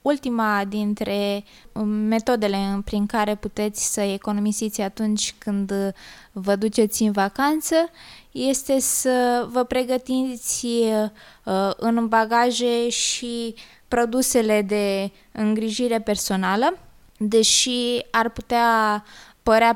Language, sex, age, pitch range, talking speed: Romanian, female, 20-39, 200-235 Hz, 90 wpm